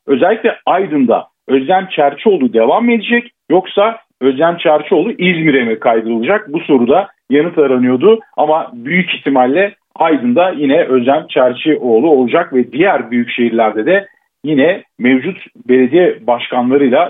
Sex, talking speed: male, 115 wpm